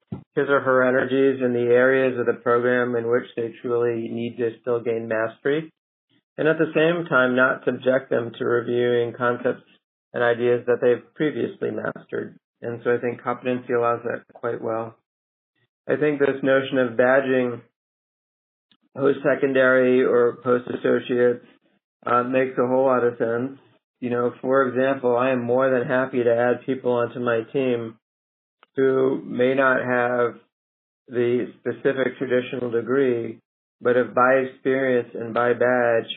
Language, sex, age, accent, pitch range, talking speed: English, male, 50-69, American, 115-130 Hz, 150 wpm